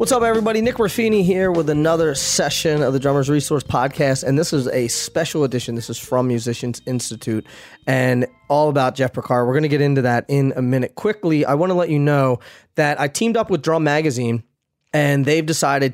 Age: 20-39